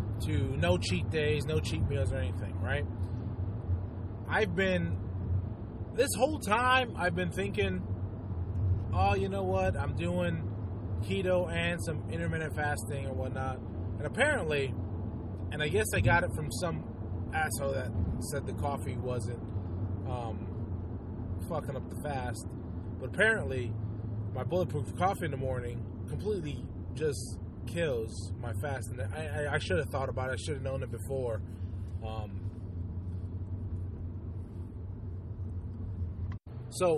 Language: English